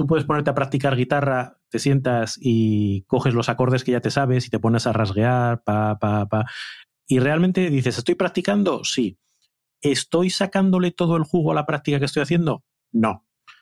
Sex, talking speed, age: male, 185 wpm, 30-49